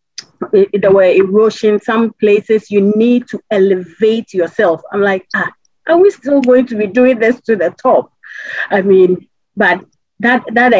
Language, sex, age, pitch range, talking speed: English, female, 40-59, 190-240 Hz, 160 wpm